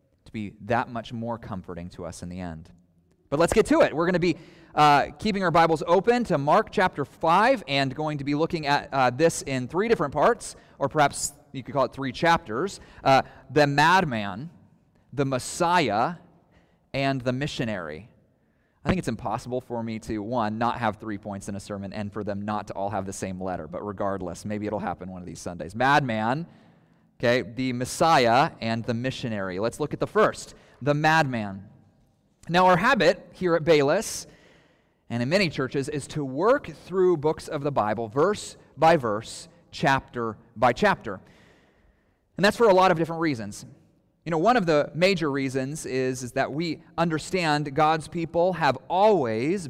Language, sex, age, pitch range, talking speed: English, male, 30-49, 110-165 Hz, 185 wpm